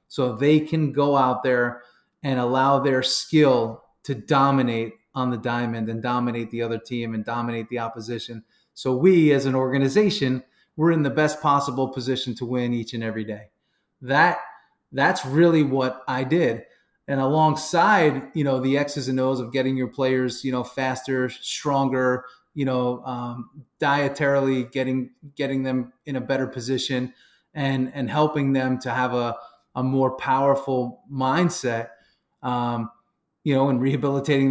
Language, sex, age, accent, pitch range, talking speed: English, male, 30-49, American, 125-145 Hz, 155 wpm